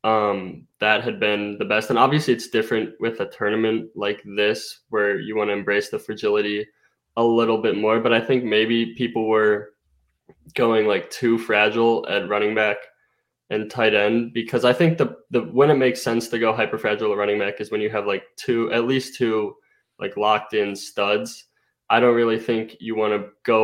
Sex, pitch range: male, 105-120 Hz